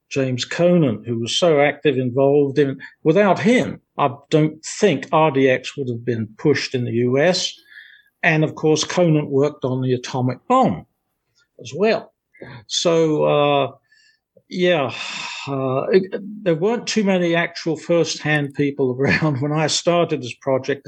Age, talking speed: 50-69, 145 wpm